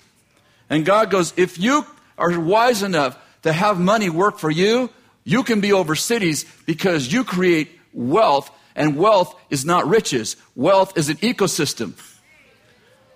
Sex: male